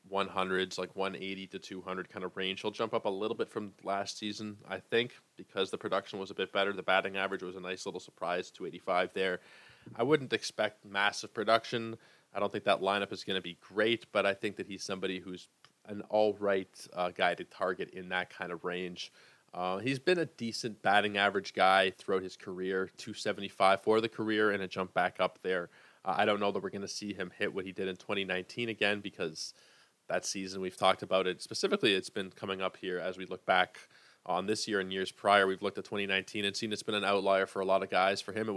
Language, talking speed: English, 230 wpm